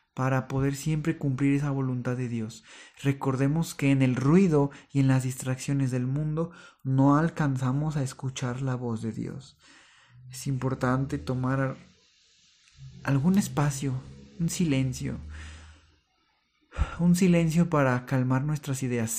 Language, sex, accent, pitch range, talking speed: Spanish, male, Mexican, 125-150 Hz, 125 wpm